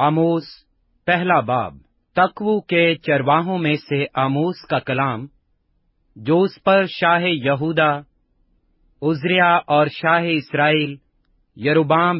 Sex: male